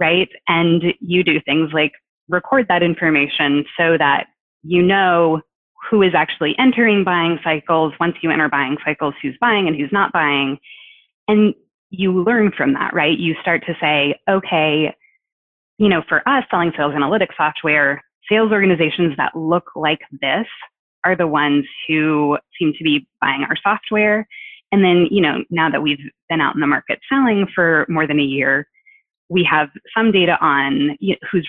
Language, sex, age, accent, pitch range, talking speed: English, female, 20-39, American, 155-205 Hz, 170 wpm